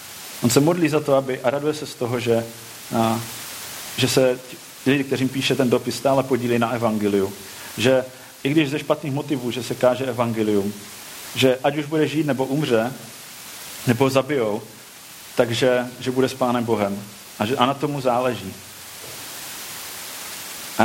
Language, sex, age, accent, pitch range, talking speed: Czech, male, 40-59, native, 120-135 Hz, 160 wpm